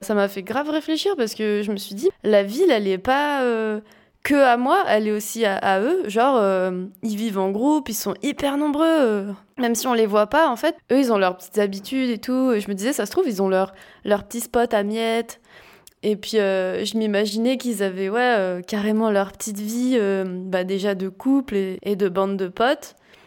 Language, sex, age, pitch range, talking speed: French, female, 20-39, 205-260 Hz, 235 wpm